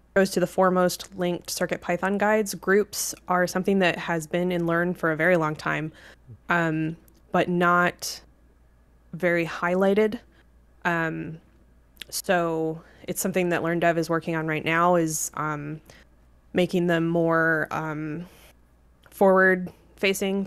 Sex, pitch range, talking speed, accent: female, 155-180 Hz, 130 wpm, American